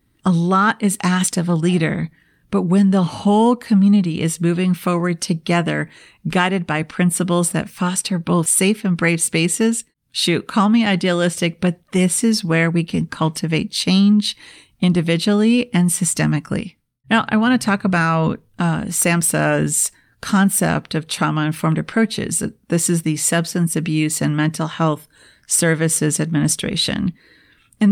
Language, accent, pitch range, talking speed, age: English, American, 165-200 Hz, 140 wpm, 40-59